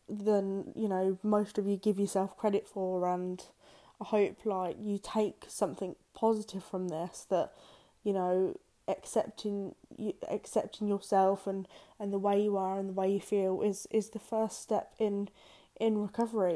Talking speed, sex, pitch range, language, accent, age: 165 wpm, female, 190-215 Hz, English, British, 10-29